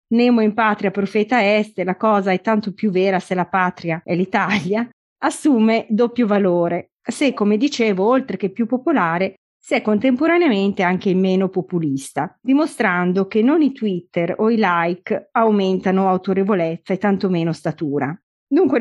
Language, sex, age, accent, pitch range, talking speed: Italian, female, 30-49, native, 185-235 Hz, 150 wpm